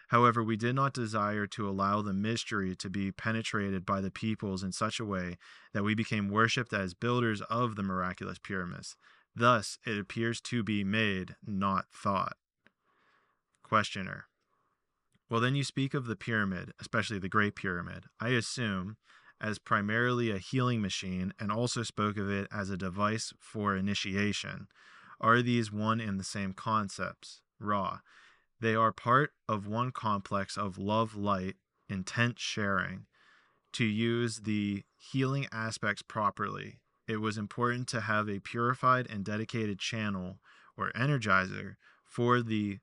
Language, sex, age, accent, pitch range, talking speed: English, male, 20-39, American, 100-115 Hz, 145 wpm